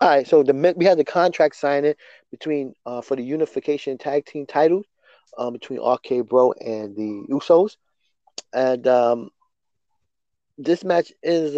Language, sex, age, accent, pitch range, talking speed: English, male, 30-49, American, 125-180 Hz, 150 wpm